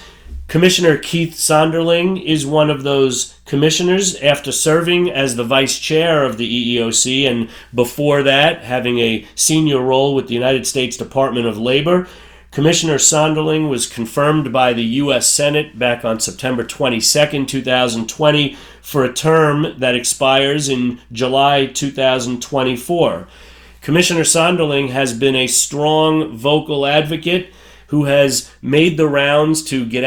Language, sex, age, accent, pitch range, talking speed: English, male, 40-59, American, 120-150 Hz, 135 wpm